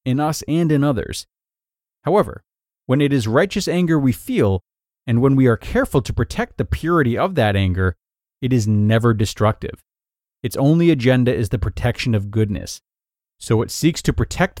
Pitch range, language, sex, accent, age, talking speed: 105-155 Hz, English, male, American, 30-49, 175 wpm